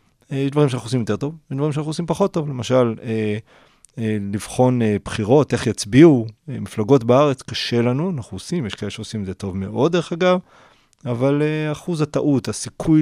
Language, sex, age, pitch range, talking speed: Hebrew, male, 30-49, 105-135 Hz, 195 wpm